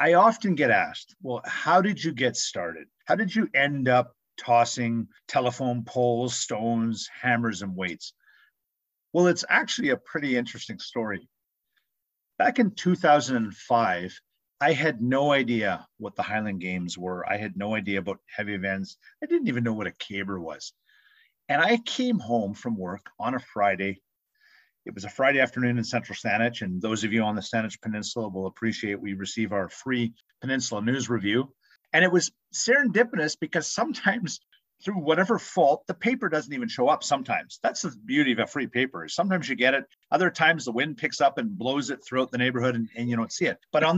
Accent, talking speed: American, 185 wpm